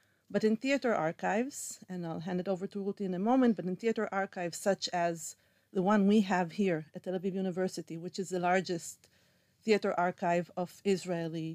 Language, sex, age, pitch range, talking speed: English, female, 40-59, 175-205 Hz, 190 wpm